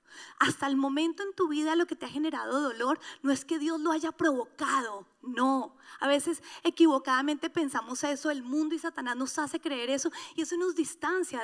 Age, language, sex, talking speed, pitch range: 30-49, Spanish, female, 195 wpm, 275-330 Hz